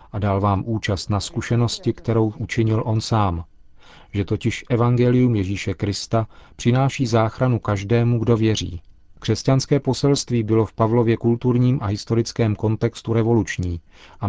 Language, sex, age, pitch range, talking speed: Czech, male, 40-59, 100-120 Hz, 130 wpm